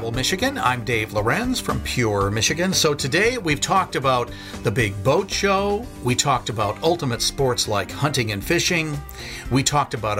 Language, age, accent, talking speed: English, 50-69, American, 165 wpm